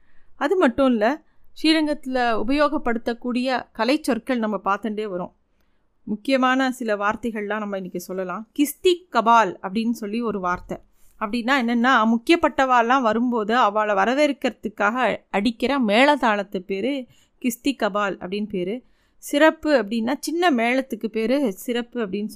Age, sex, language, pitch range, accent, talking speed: 30-49, female, Tamil, 215-270 Hz, native, 115 wpm